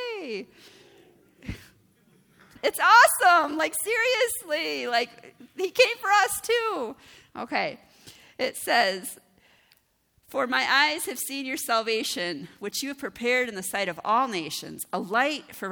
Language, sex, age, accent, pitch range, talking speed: English, female, 40-59, American, 195-275 Hz, 125 wpm